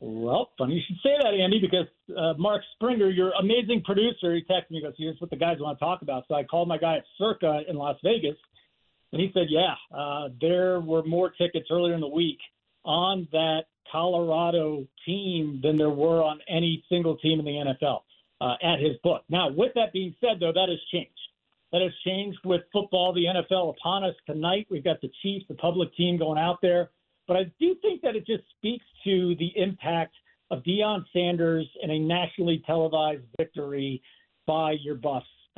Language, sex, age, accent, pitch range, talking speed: English, male, 50-69, American, 160-190 Hz, 200 wpm